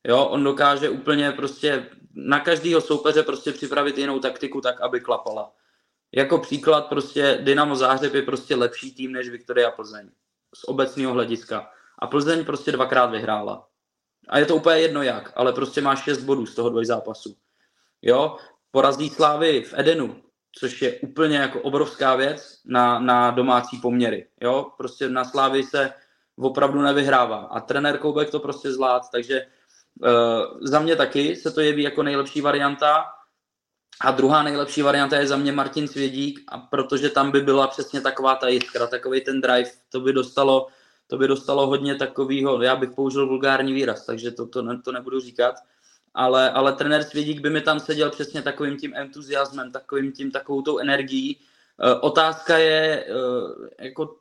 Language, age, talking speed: Czech, 20-39, 170 wpm